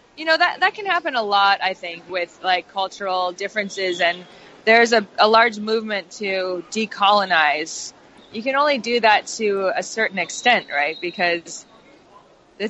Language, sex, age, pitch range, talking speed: English, female, 20-39, 180-230 Hz, 160 wpm